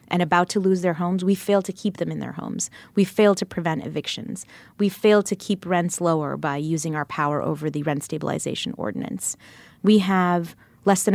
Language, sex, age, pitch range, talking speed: English, female, 20-39, 170-200 Hz, 205 wpm